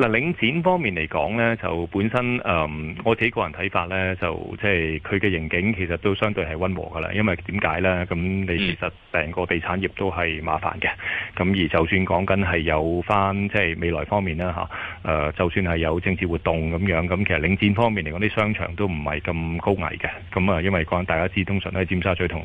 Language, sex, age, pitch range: Chinese, male, 30-49, 85-100 Hz